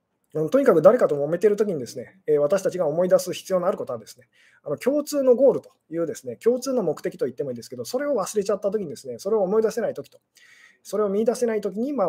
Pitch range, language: 150-220 Hz, Japanese